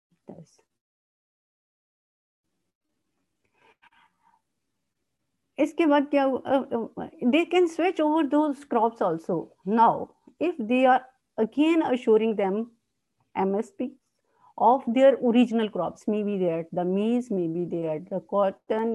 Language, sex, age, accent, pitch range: English, female, 50-69, Indian, 220-285 Hz